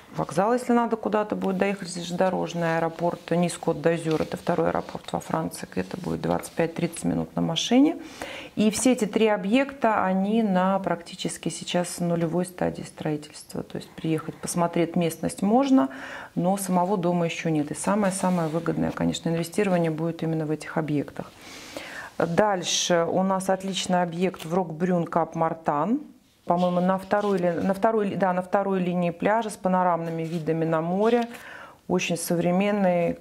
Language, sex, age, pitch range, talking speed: Russian, female, 40-59, 165-205 Hz, 140 wpm